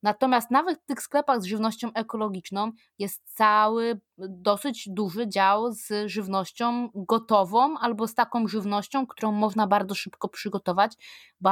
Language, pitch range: Polish, 195-235 Hz